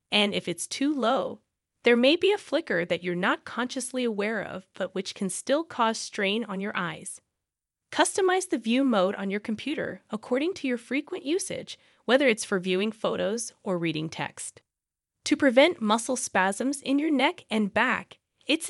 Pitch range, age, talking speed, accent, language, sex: 190-270 Hz, 20-39, 175 wpm, American, English, female